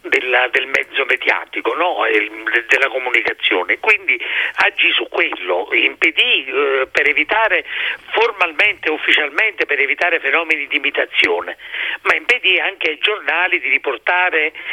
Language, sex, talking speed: Italian, male, 110 wpm